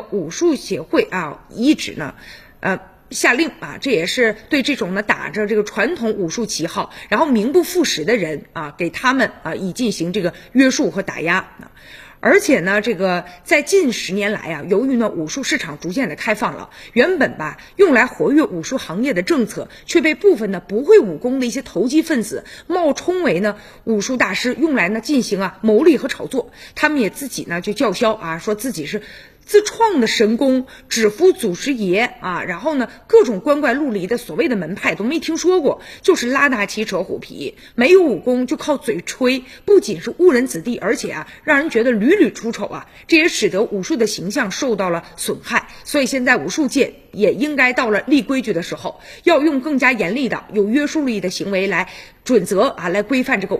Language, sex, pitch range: Chinese, female, 205-295 Hz